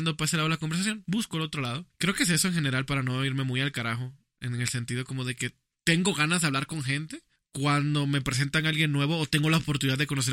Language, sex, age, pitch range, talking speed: Spanish, male, 20-39, 135-160 Hz, 275 wpm